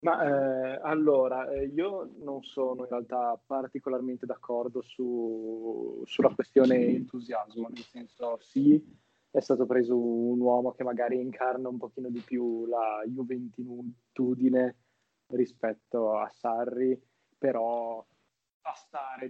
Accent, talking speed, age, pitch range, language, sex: native, 110 wpm, 20-39, 115-130 Hz, Italian, male